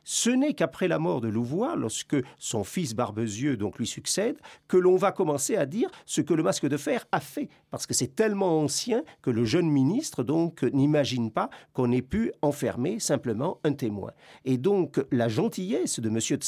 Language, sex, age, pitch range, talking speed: French, male, 50-69, 120-165 Hz, 195 wpm